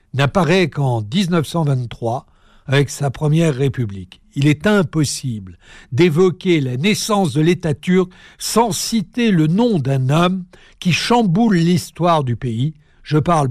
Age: 60-79